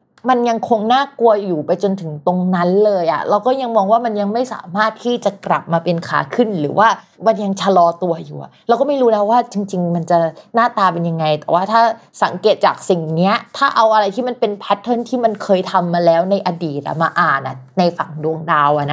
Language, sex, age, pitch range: Thai, female, 20-39, 165-220 Hz